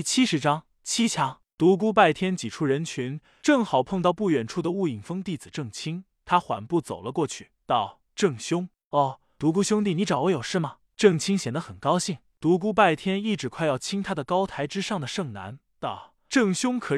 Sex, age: male, 20-39